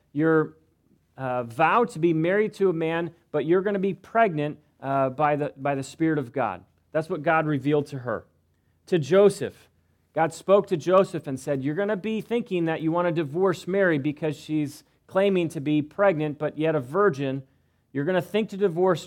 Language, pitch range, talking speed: English, 135-180 Hz, 195 wpm